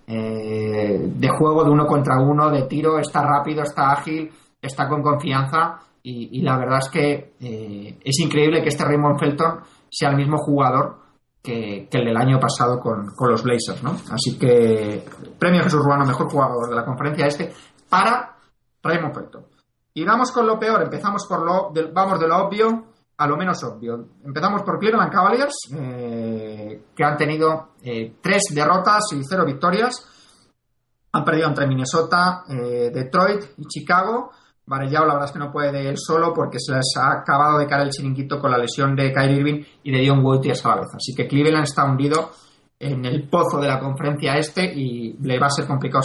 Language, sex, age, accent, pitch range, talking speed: Spanish, male, 30-49, Spanish, 130-160 Hz, 190 wpm